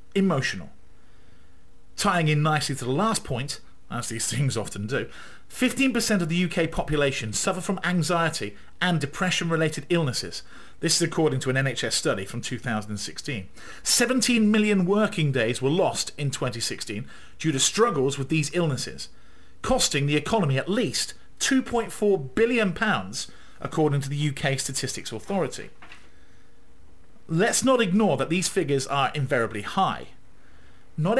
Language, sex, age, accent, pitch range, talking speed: English, male, 40-59, British, 135-200 Hz, 135 wpm